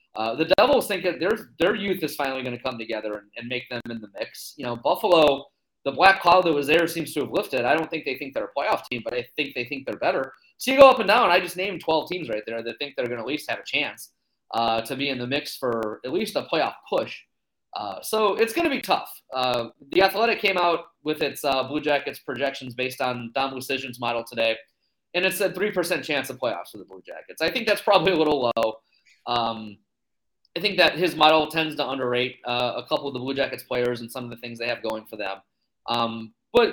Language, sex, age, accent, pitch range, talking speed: English, male, 30-49, American, 120-180 Hz, 250 wpm